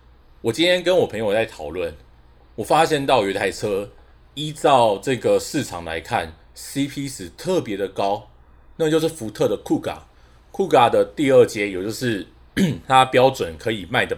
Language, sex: Chinese, male